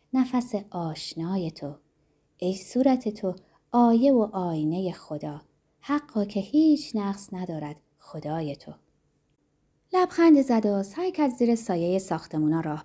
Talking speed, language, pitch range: 120 wpm, Persian, 160-250 Hz